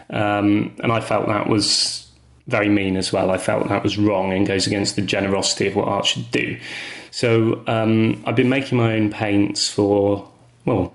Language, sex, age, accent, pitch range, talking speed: English, male, 30-49, British, 100-115 Hz, 190 wpm